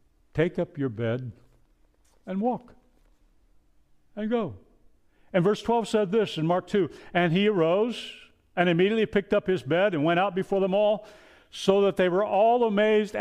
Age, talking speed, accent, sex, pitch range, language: 60-79, 170 wpm, American, male, 115-180 Hz, English